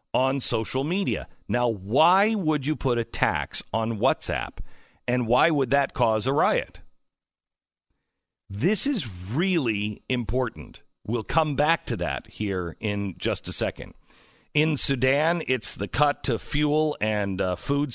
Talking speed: 145 wpm